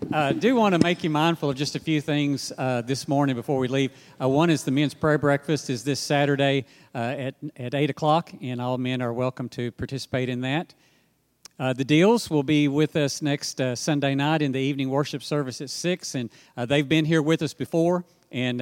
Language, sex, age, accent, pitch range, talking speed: English, male, 50-69, American, 135-160 Hz, 220 wpm